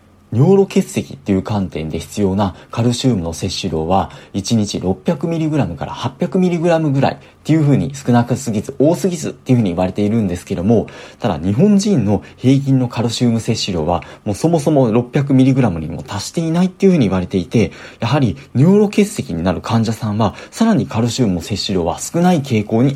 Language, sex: Japanese, male